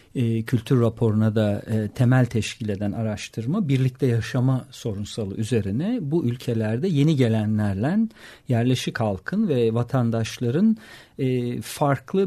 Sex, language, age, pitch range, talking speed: male, Turkish, 50-69, 110-140 Hz, 100 wpm